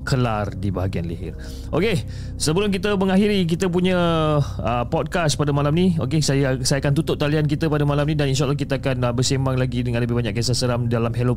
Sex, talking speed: male, 205 wpm